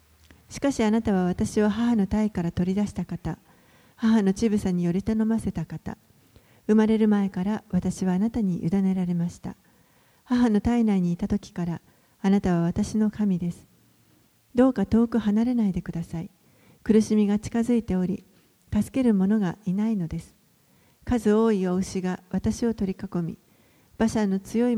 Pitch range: 185-220 Hz